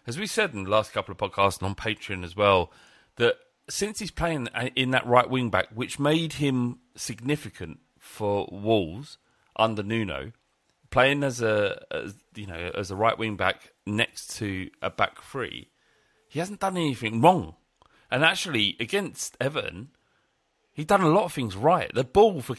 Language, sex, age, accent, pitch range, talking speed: English, male, 40-59, British, 105-150 Hz, 175 wpm